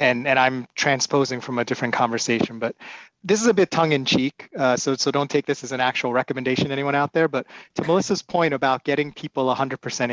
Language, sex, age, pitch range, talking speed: English, male, 30-49, 130-170 Hz, 225 wpm